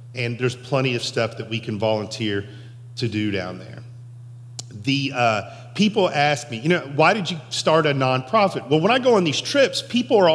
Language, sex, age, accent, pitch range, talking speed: English, male, 40-59, American, 120-150 Hz, 205 wpm